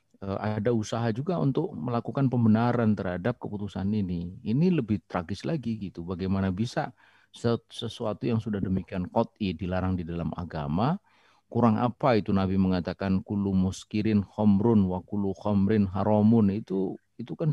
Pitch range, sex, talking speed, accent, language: 95-115 Hz, male, 135 wpm, native, Indonesian